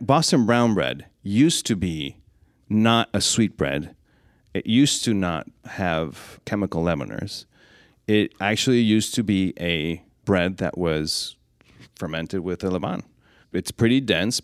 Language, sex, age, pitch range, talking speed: English, male, 30-49, 85-110 Hz, 135 wpm